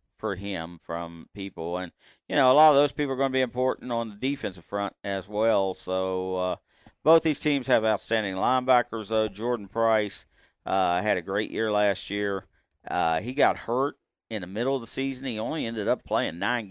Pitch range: 95-125 Hz